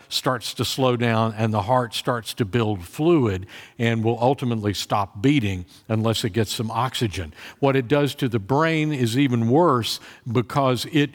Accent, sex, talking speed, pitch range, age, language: American, male, 170 wpm, 115-145 Hz, 60-79, English